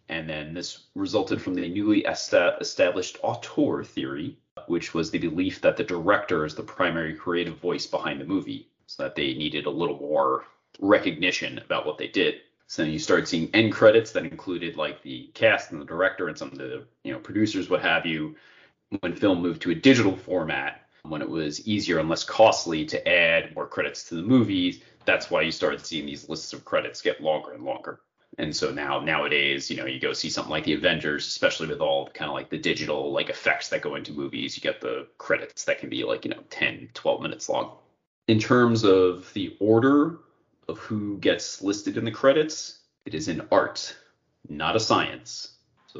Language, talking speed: English, 205 wpm